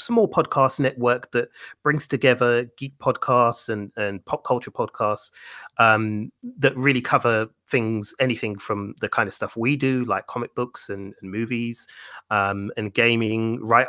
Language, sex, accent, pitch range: English, male, British, 105-125 Hz